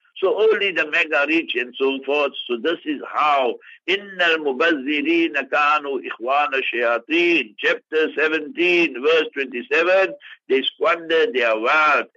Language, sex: English, male